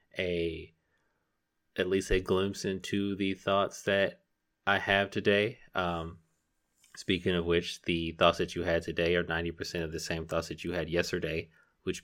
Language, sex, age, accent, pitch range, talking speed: English, male, 30-49, American, 85-95 Hz, 165 wpm